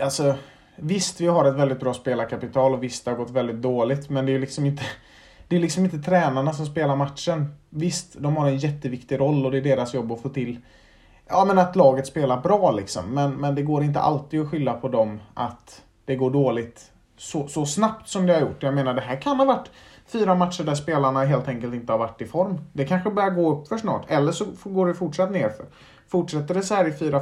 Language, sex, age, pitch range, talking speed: Swedish, male, 30-49, 130-160 Hz, 235 wpm